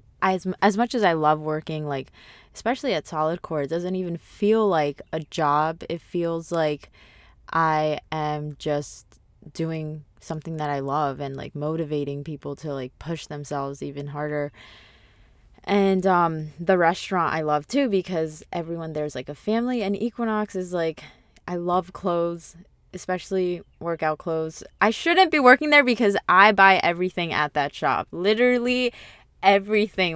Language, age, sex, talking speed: English, 20-39, female, 155 wpm